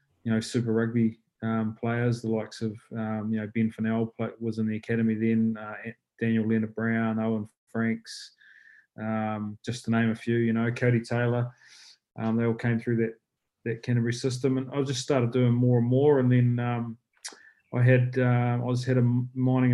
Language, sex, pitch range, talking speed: English, male, 110-120 Hz, 190 wpm